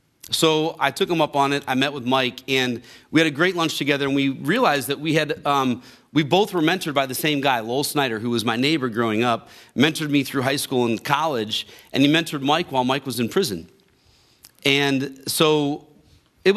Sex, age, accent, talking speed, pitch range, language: male, 40-59, American, 215 wpm, 130-160 Hz, English